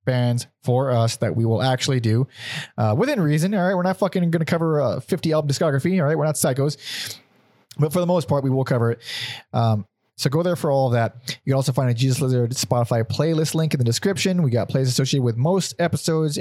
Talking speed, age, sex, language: 240 wpm, 30-49, male, English